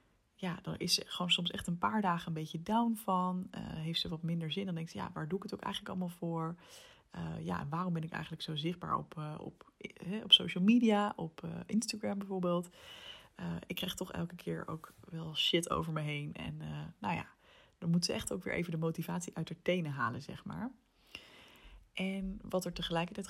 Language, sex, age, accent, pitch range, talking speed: Dutch, female, 20-39, Dutch, 165-195 Hz, 225 wpm